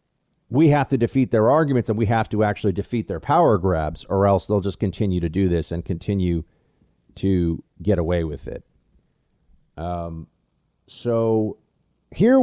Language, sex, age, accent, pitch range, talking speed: English, male, 40-59, American, 100-165 Hz, 160 wpm